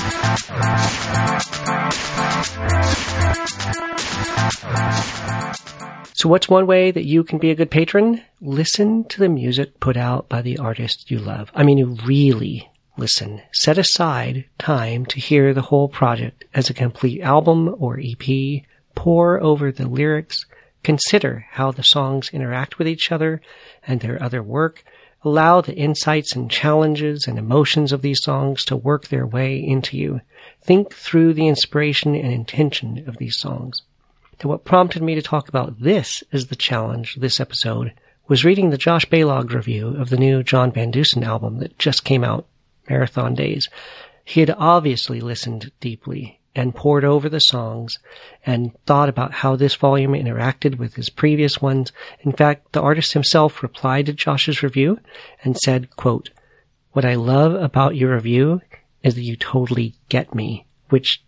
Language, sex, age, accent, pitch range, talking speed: English, male, 40-59, American, 125-150 Hz, 160 wpm